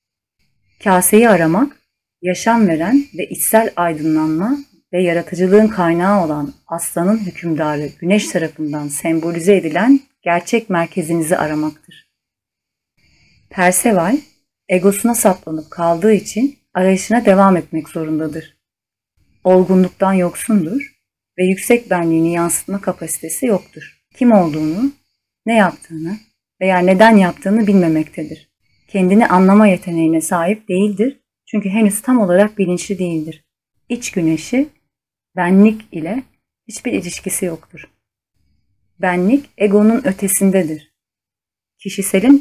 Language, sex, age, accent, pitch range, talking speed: Turkish, female, 30-49, native, 160-205 Hz, 95 wpm